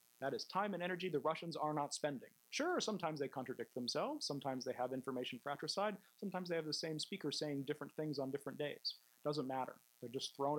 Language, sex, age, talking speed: English, male, 40-59, 210 wpm